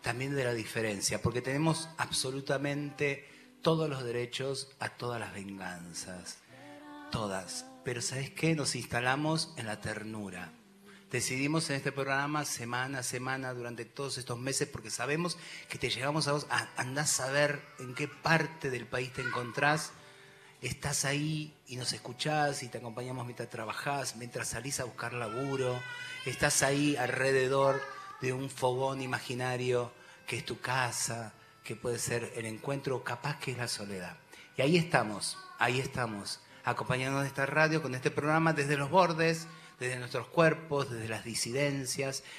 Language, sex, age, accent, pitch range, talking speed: Spanish, male, 30-49, Argentinian, 120-145 Hz, 155 wpm